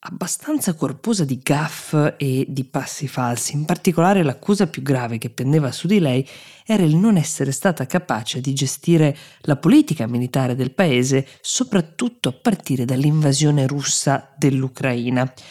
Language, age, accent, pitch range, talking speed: Italian, 20-39, native, 135-180 Hz, 145 wpm